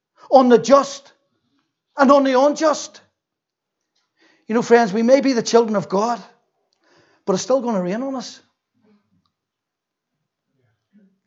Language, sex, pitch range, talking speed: English, male, 195-260 Hz, 140 wpm